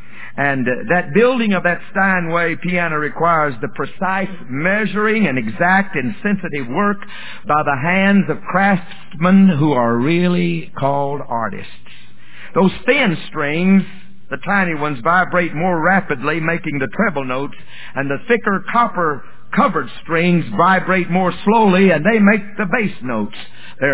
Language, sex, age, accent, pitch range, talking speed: English, male, 60-79, American, 155-200 Hz, 135 wpm